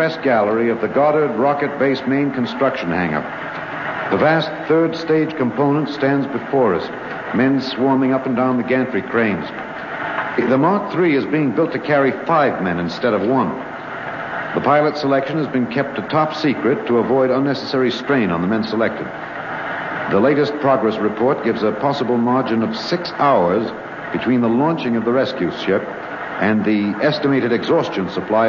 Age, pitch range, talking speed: 70-89, 120-150 Hz, 165 wpm